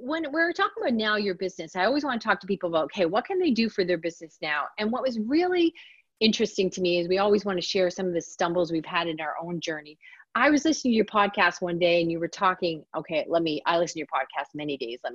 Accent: American